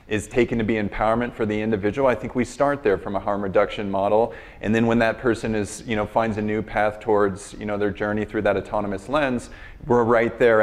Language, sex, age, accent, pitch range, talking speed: English, male, 30-49, American, 105-115 Hz, 235 wpm